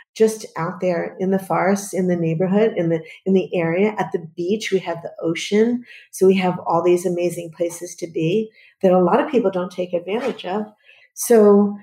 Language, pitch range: English, 175-205 Hz